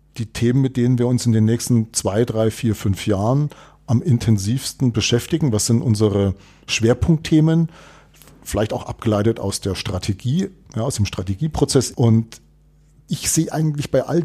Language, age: German, 40-59